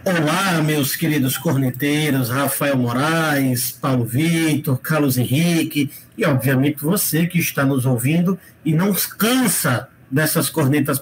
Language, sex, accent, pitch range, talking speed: Portuguese, male, Brazilian, 135-165 Hz, 120 wpm